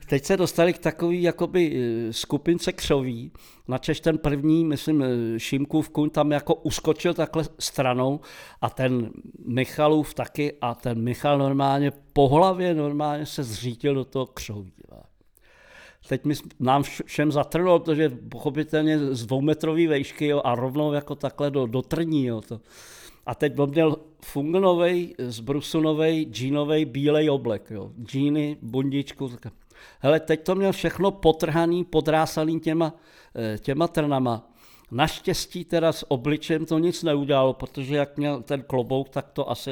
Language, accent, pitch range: Czech, native, 130-160 Hz